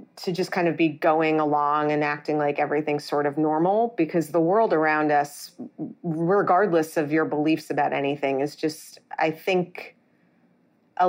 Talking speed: 160 wpm